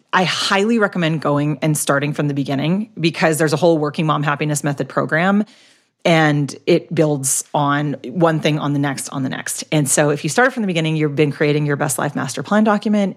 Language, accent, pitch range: English, American, 150-185 Hz